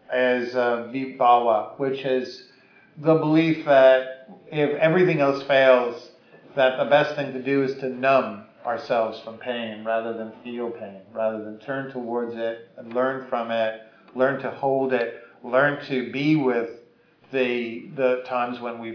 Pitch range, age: 120-150 Hz, 50-69